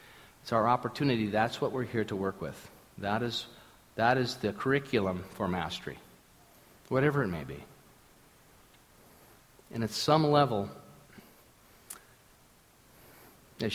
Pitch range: 95-130 Hz